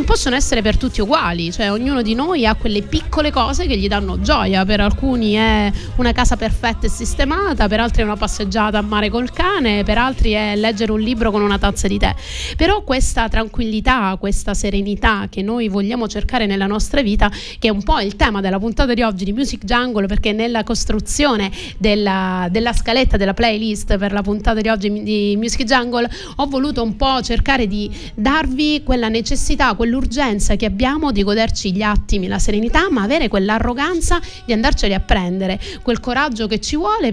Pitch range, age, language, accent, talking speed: 205-255 Hz, 30-49, Italian, native, 185 wpm